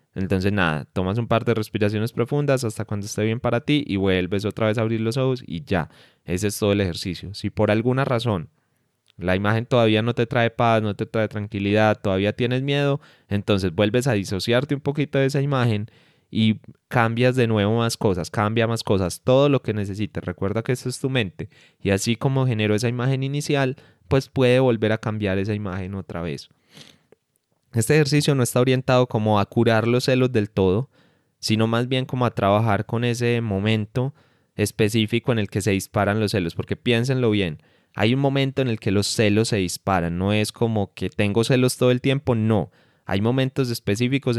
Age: 20-39